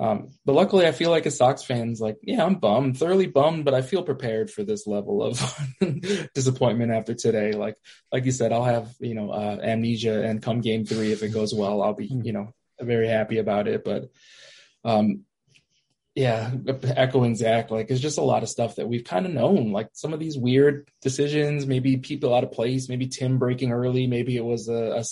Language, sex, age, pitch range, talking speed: English, male, 20-39, 115-140 Hz, 215 wpm